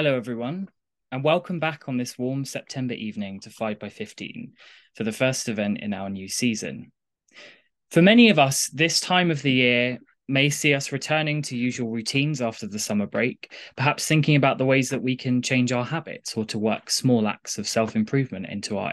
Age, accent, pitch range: 20-39, British, 115-155 Hz